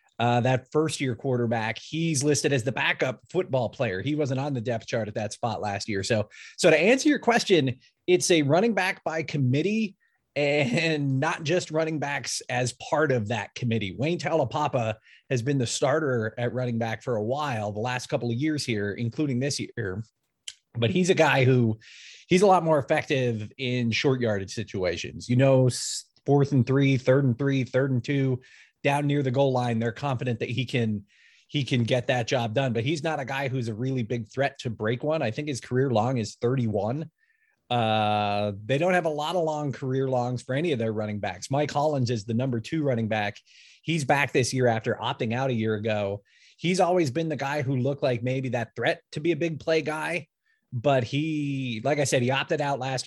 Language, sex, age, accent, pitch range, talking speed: English, male, 30-49, American, 115-150 Hz, 210 wpm